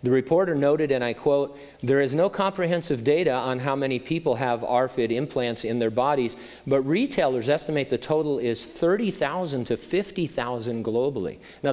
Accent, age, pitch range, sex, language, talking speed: American, 40-59, 115-135 Hz, male, English, 165 wpm